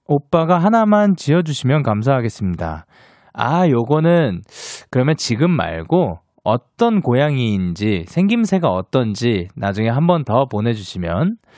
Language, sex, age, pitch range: Korean, male, 20-39, 105-180 Hz